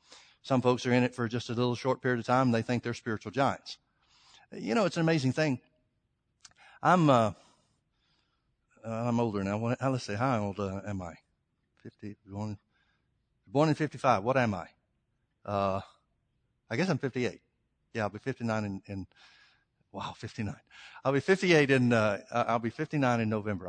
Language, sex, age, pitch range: English, male, 60-79, 110-150 Hz